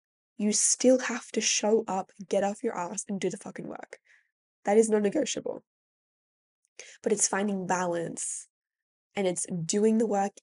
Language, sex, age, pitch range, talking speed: English, female, 10-29, 190-230 Hz, 160 wpm